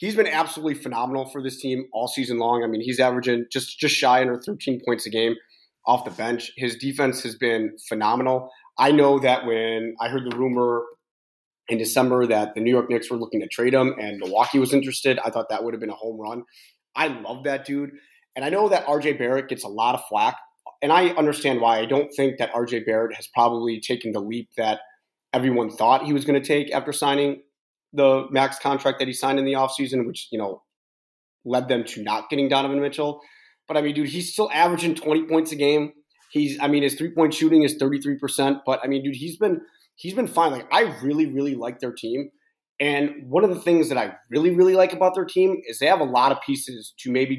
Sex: male